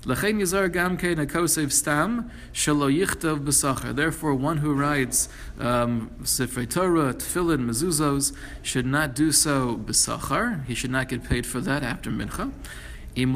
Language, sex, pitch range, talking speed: English, male, 130-170 Hz, 135 wpm